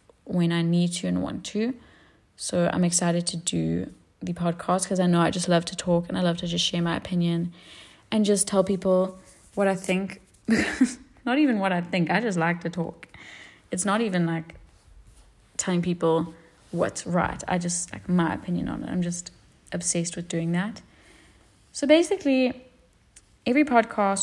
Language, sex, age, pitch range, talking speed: English, female, 20-39, 170-205 Hz, 180 wpm